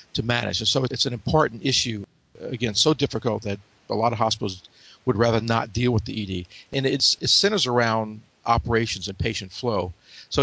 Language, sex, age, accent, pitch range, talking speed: English, male, 50-69, American, 110-130 Hz, 190 wpm